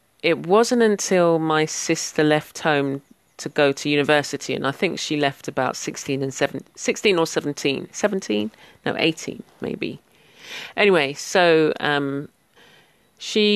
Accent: British